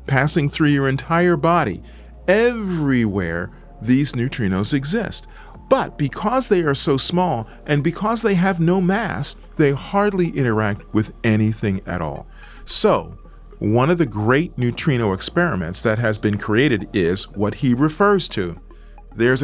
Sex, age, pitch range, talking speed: male, 40-59, 105-160 Hz, 140 wpm